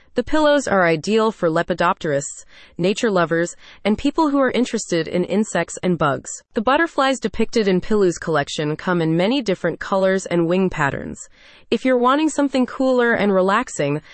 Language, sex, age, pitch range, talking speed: English, female, 20-39, 170-235 Hz, 160 wpm